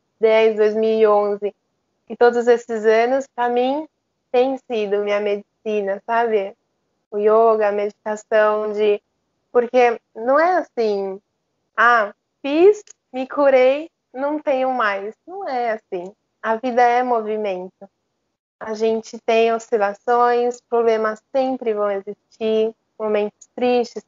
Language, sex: Portuguese, female